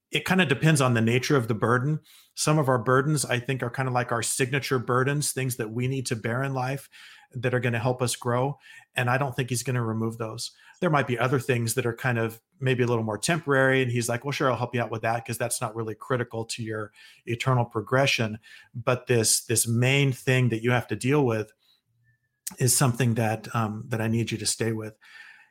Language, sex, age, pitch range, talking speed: English, male, 40-59, 115-130 Hz, 240 wpm